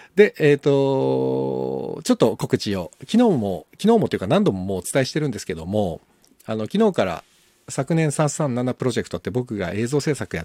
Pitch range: 90-140 Hz